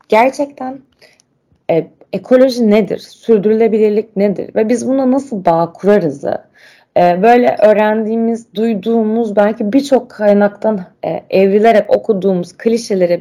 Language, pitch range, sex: Turkish, 190-235 Hz, female